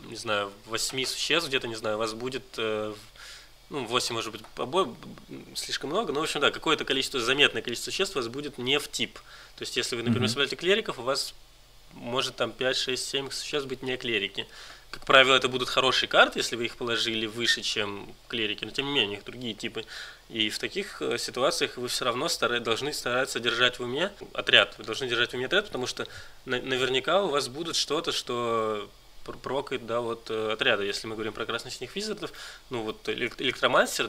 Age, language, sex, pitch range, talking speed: 20-39, Russian, male, 110-130 Hz, 200 wpm